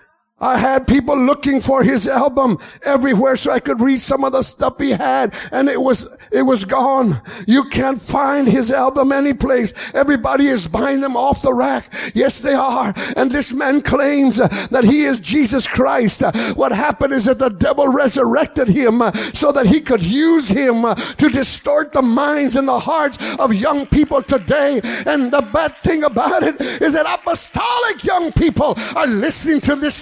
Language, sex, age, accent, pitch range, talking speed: English, male, 50-69, American, 270-335 Hz, 180 wpm